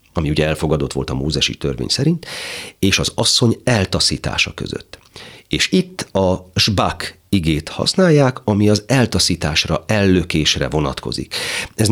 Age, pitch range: 40-59, 85-115 Hz